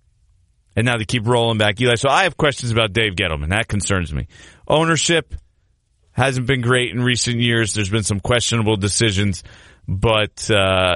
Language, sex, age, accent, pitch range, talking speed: English, male, 30-49, American, 95-130 Hz, 170 wpm